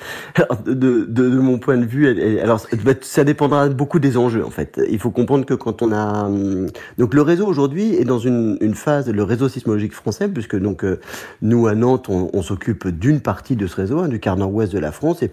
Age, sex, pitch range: 40-59, male, 100-135 Hz